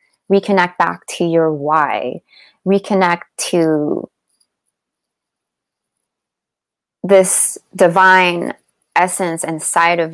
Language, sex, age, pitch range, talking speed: English, female, 20-39, 165-190 Hz, 70 wpm